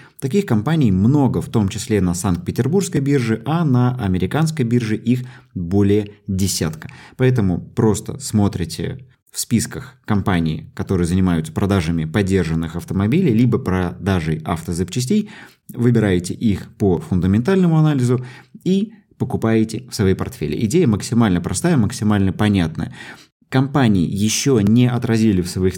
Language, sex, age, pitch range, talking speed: Russian, male, 20-39, 95-125 Hz, 120 wpm